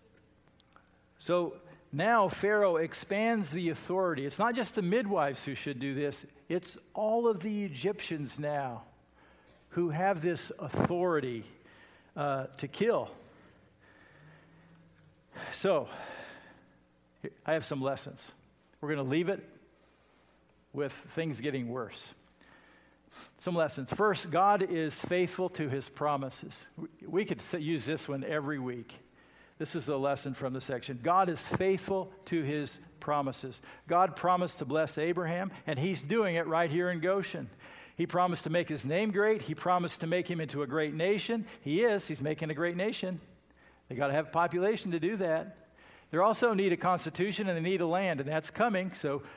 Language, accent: English, American